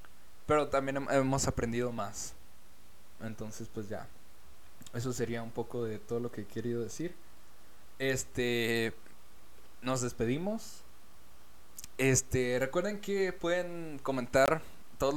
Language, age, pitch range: Spanish, 20-39, 110-145 Hz